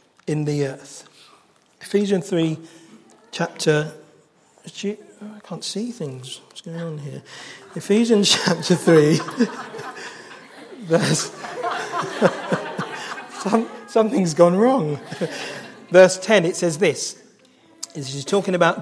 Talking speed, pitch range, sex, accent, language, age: 95 wpm, 165-225 Hz, male, British, English, 40-59